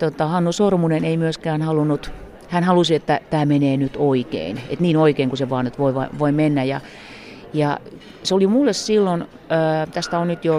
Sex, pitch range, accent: female, 135-165 Hz, native